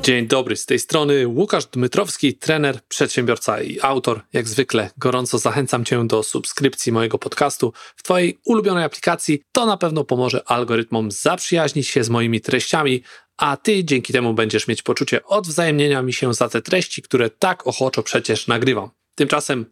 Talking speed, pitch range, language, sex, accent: 160 wpm, 120-150 Hz, Polish, male, native